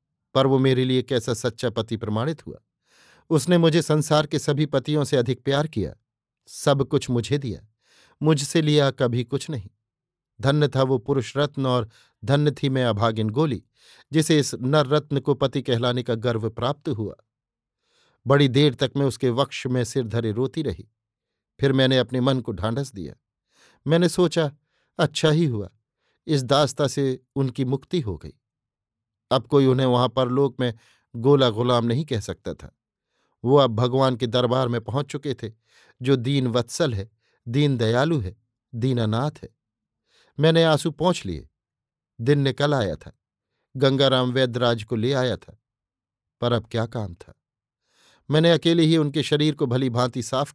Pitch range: 120-145 Hz